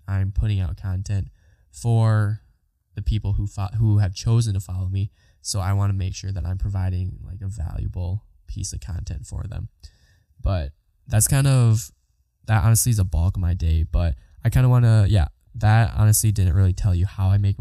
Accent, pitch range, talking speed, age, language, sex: American, 90-110 Hz, 200 wpm, 10-29, English, male